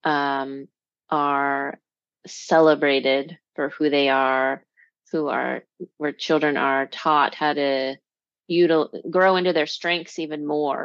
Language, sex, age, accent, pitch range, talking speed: English, female, 30-49, American, 145-175 Hz, 120 wpm